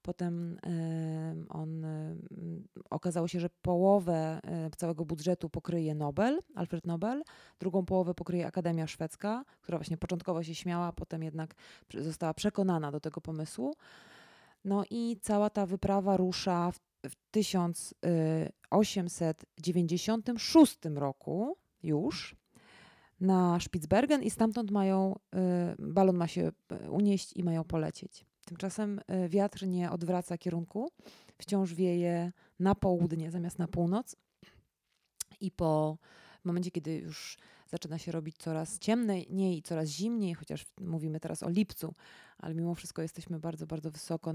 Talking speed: 125 wpm